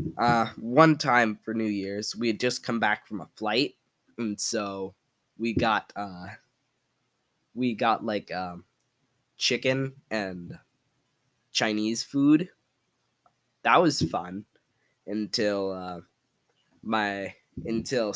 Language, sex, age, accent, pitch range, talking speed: English, male, 10-29, American, 100-130 Hz, 110 wpm